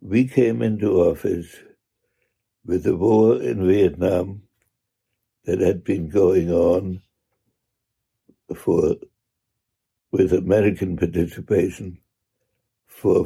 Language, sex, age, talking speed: English, male, 60-79, 85 wpm